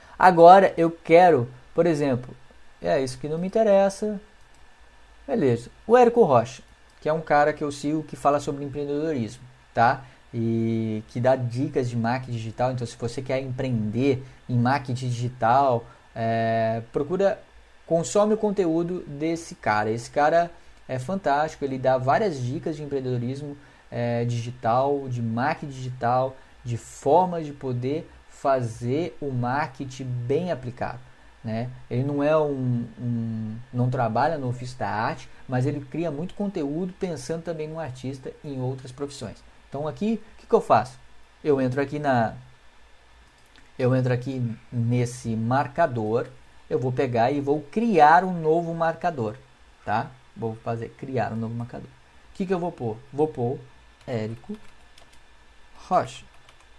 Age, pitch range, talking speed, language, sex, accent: 20-39, 120-155 Hz, 145 wpm, Portuguese, male, Brazilian